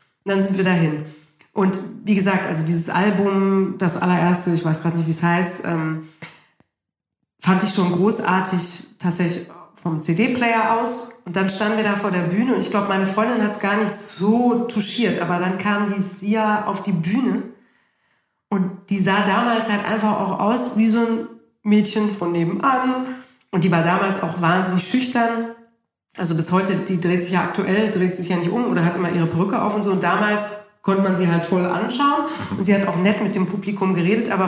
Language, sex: German, female